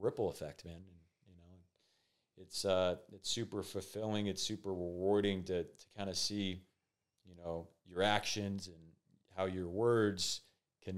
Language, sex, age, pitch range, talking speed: English, male, 30-49, 90-100 Hz, 140 wpm